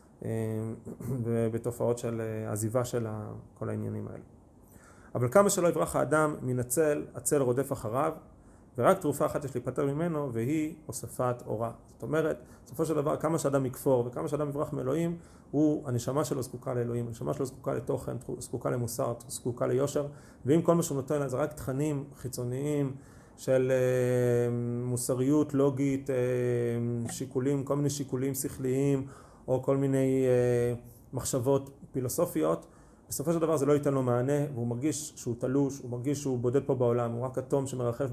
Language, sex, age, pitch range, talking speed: Hebrew, male, 30-49, 120-145 Hz, 150 wpm